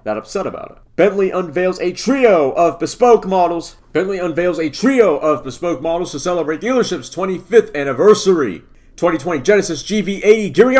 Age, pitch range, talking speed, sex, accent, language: 30-49, 150-205 Hz, 145 wpm, male, American, English